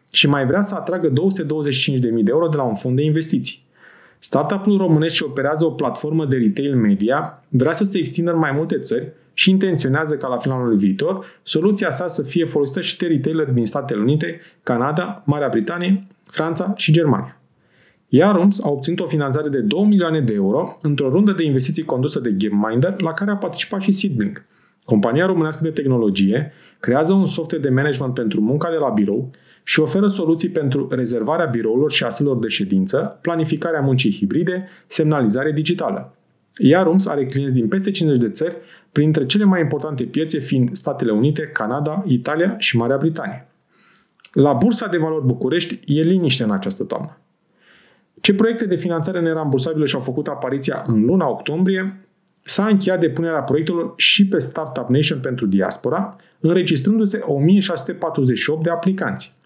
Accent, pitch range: native, 135-180 Hz